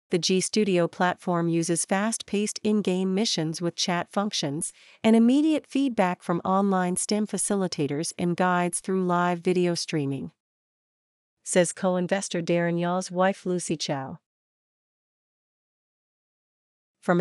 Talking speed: 110 wpm